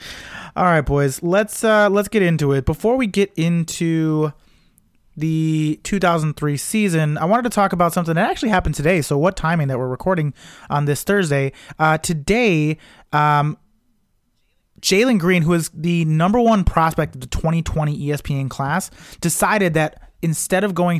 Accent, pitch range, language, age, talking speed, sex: American, 150-185 Hz, English, 30-49, 170 wpm, male